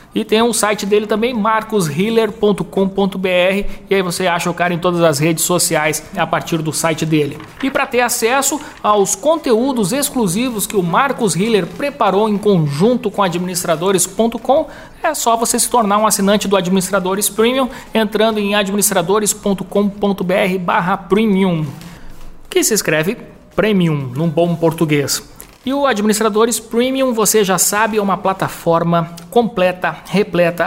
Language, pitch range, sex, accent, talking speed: Portuguese, 175-215 Hz, male, Brazilian, 145 wpm